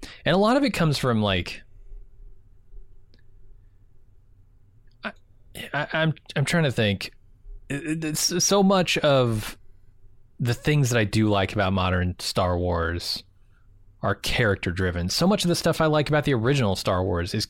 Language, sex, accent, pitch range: English, male, American, 95-130 Hz